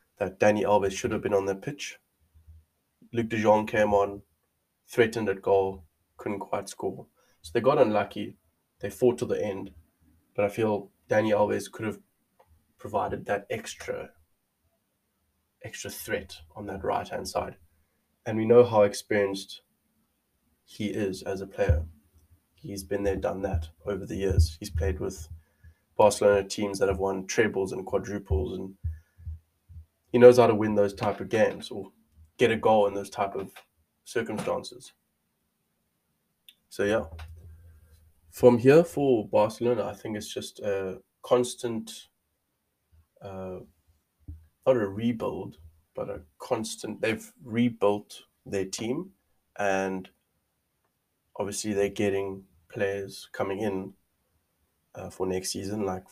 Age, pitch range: 20-39, 80-105 Hz